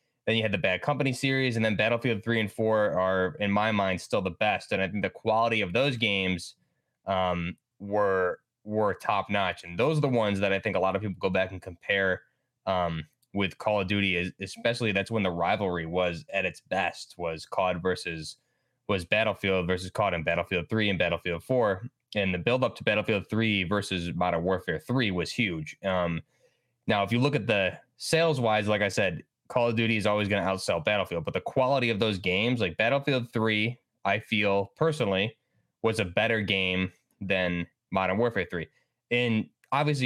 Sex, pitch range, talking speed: male, 95-115 Hz, 200 wpm